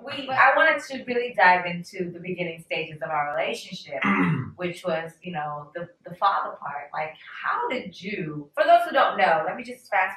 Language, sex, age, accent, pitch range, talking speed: English, female, 20-39, American, 155-195 Hz, 195 wpm